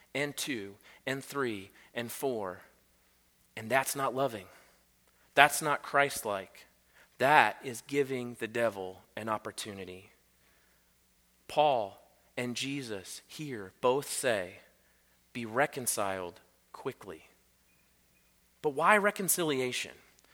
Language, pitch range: English, 125-180 Hz